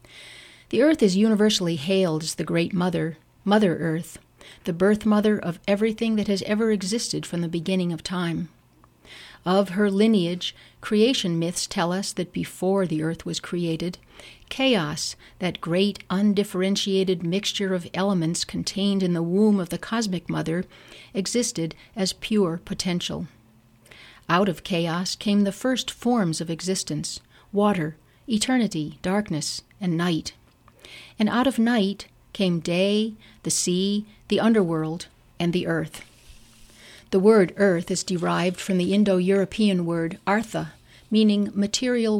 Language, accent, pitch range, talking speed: English, American, 170-205 Hz, 135 wpm